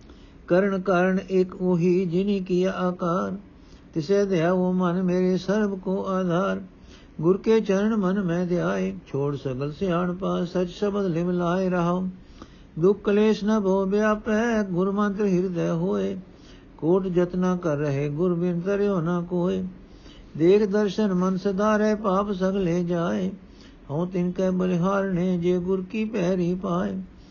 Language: Punjabi